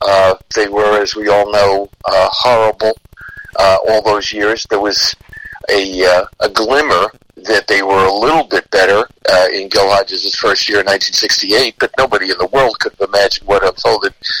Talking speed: 185 wpm